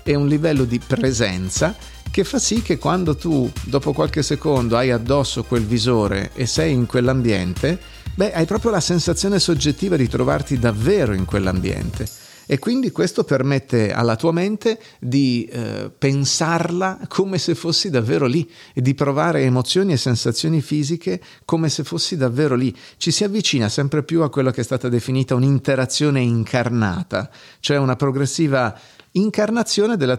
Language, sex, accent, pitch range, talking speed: Italian, male, native, 115-155 Hz, 155 wpm